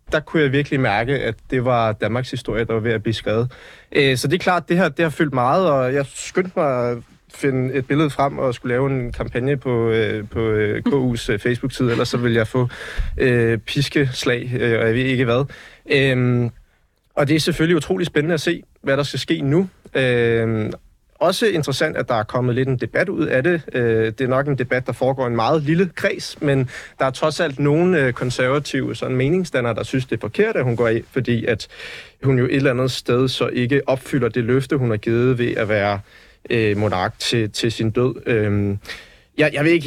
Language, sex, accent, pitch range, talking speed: Danish, male, native, 115-140 Hz, 210 wpm